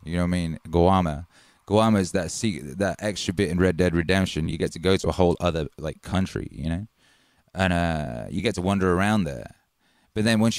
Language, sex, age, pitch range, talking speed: English, male, 20-39, 80-100 Hz, 225 wpm